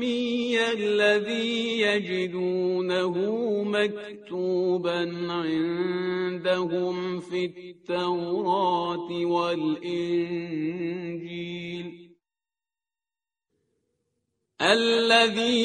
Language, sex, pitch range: Persian, male, 180-230 Hz